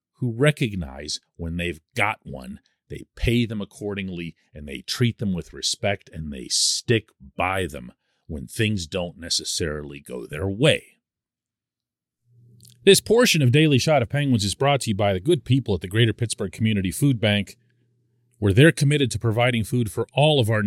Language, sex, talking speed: English, male, 175 wpm